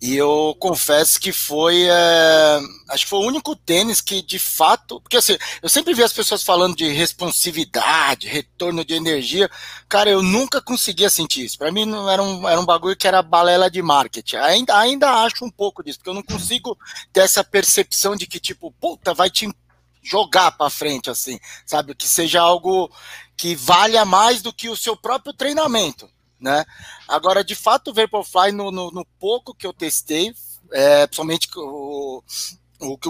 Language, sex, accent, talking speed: Portuguese, male, Brazilian, 180 wpm